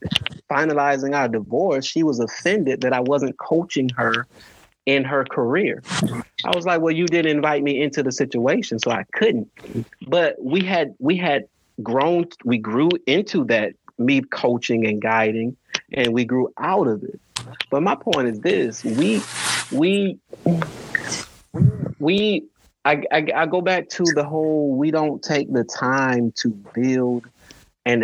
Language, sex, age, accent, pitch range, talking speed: English, male, 30-49, American, 115-150 Hz, 155 wpm